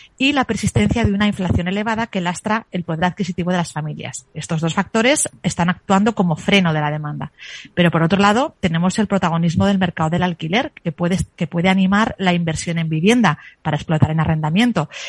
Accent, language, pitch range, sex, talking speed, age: Spanish, Spanish, 170-205 Hz, female, 190 wpm, 30-49